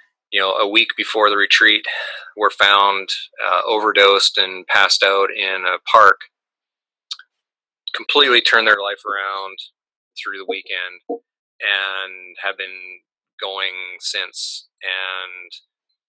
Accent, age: American, 30-49